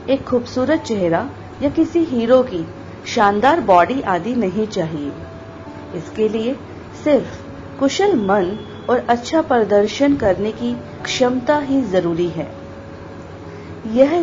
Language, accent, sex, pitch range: Hindi, native, female, 170-265 Hz